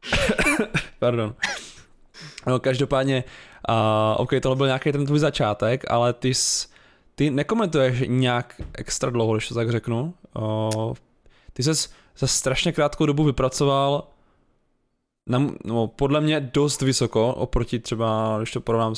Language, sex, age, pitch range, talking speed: Czech, male, 20-39, 115-135 Hz, 135 wpm